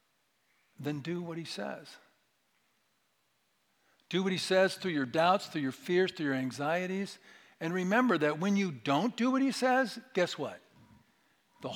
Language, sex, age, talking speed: English, male, 50-69, 160 wpm